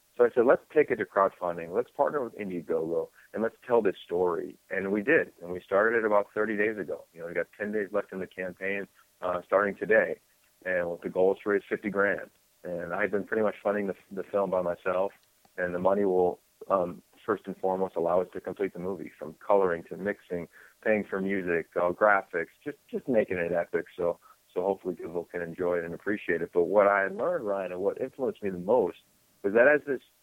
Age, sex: 40-59, male